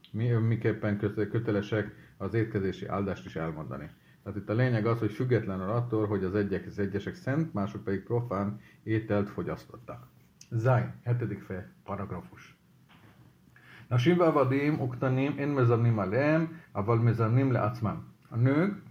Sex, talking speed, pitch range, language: male, 125 wpm, 105-130 Hz, Hungarian